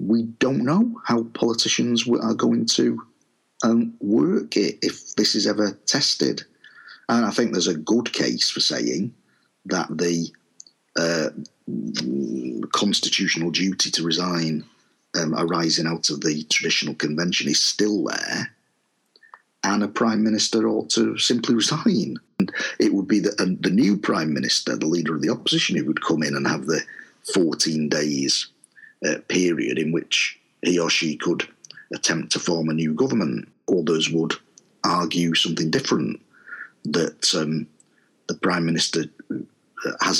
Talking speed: 145 wpm